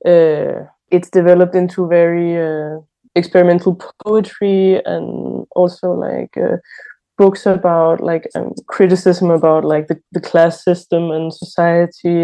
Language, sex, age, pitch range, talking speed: English, female, 20-39, 175-205 Hz, 125 wpm